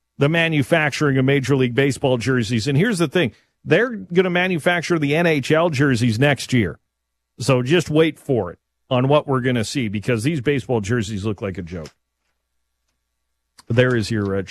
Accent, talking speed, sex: American, 180 wpm, male